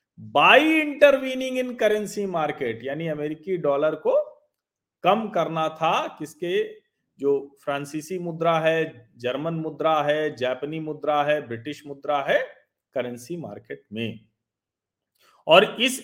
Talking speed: 115 wpm